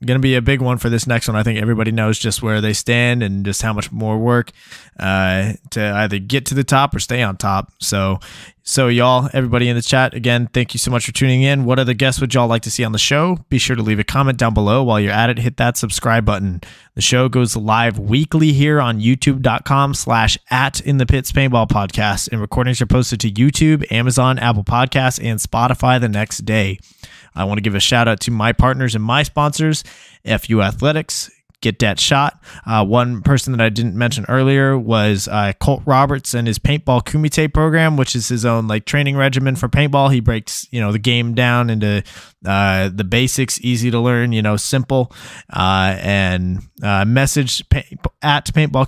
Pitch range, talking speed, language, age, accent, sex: 110-130 Hz, 210 wpm, English, 20-39, American, male